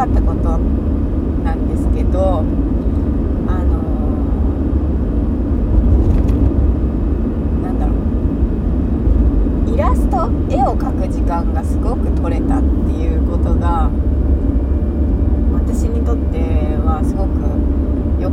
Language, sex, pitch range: Japanese, female, 75-80 Hz